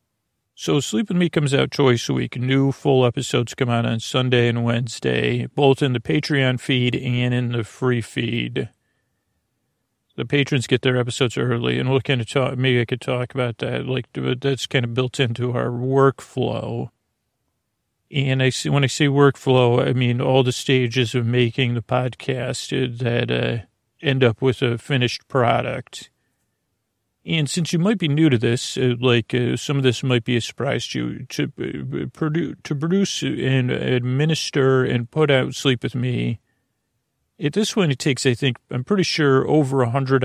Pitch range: 120-135 Hz